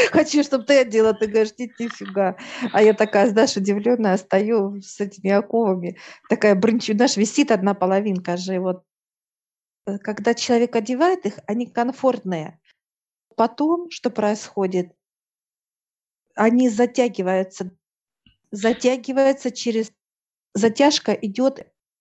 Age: 40-59